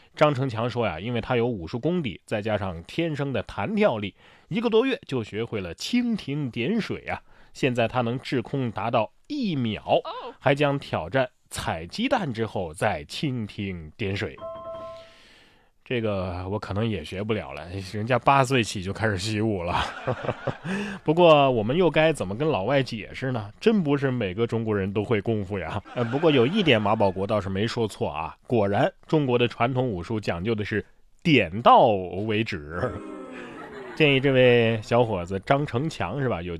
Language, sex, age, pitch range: Chinese, male, 20-39, 105-145 Hz